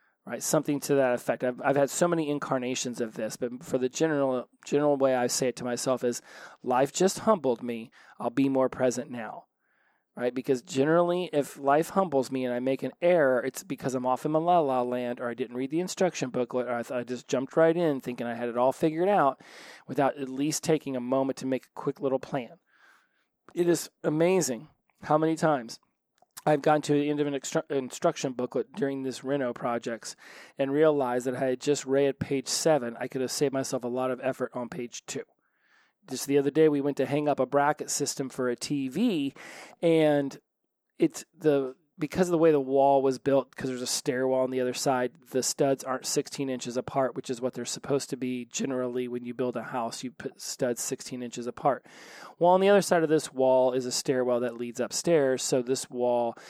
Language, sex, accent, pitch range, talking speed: English, male, American, 125-145 Hz, 215 wpm